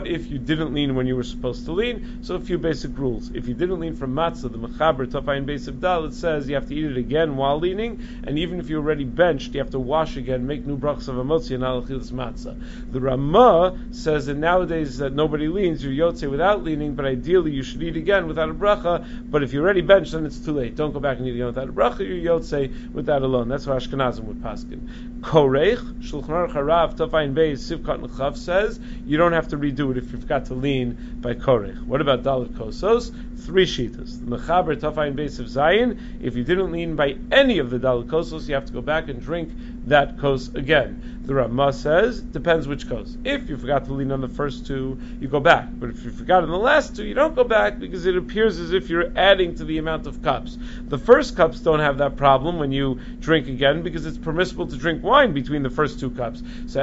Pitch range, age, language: 135-185 Hz, 40-59, English